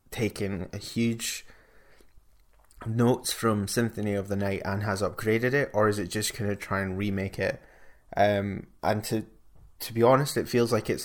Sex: male